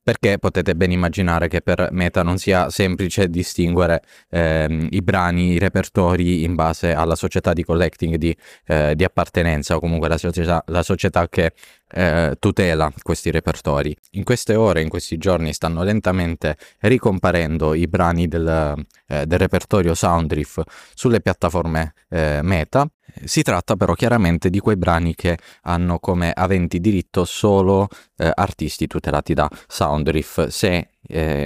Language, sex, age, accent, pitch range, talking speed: Italian, male, 20-39, native, 80-95 Hz, 145 wpm